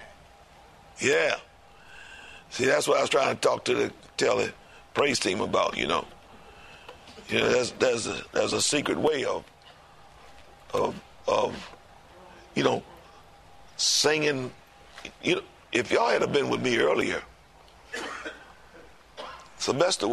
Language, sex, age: English, male, 50-69